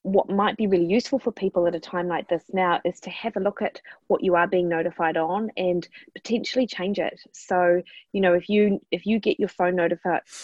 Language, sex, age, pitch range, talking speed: English, female, 20-39, 170-200 Hz, 230 wpm